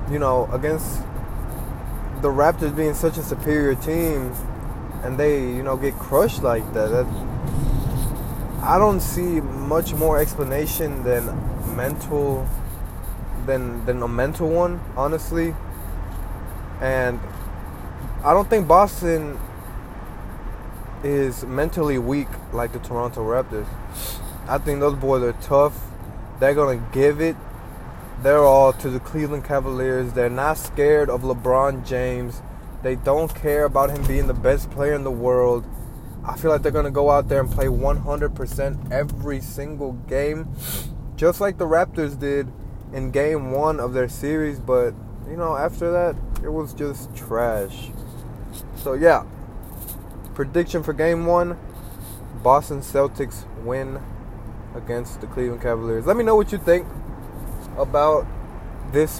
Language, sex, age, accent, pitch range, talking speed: English, male, 20-39, American, 115-145 Hz, 135 wpm